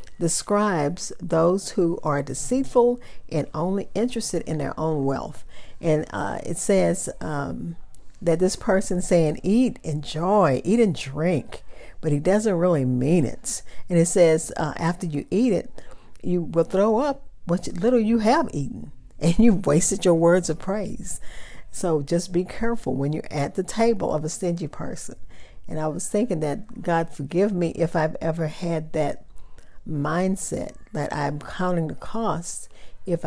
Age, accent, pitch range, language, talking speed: 50-69, American, 150-185 Hz, English, 160 wpm